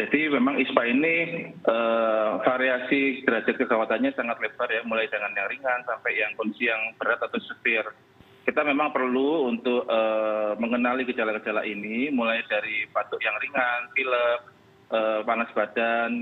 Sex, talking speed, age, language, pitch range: male, 145 wpm, 30-49, Indonesian, 115-135 Hz